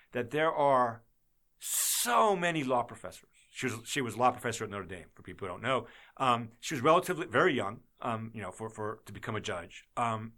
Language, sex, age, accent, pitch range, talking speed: English, male, 40-59, American, 115-155 Hz, 220 wpm